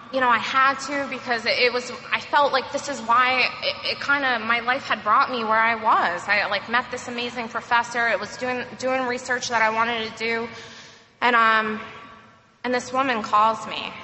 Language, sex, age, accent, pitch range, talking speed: English, female, 20-39, American, 210-250 Hz, 205 wpm